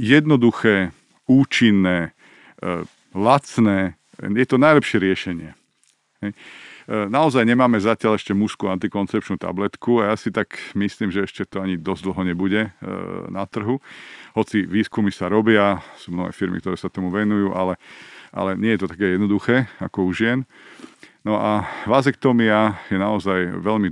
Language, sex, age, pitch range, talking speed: Slovak, male, 50-69, 95-110 Hz, 140 wpm